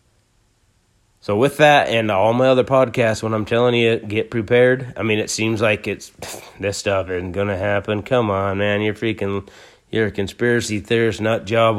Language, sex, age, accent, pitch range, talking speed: English, male, 30-49, American, 100-120 Hz, 185 wpm